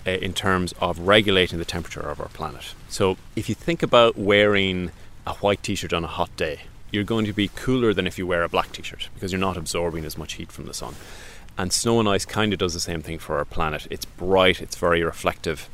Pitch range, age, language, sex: 85-105 Hz, 30-49, English, male